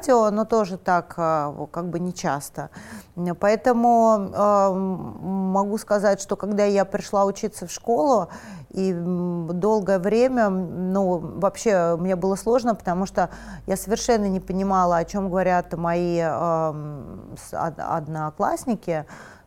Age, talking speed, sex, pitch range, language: 30-49, 115 wpm, female, 175-205 Hz, Russian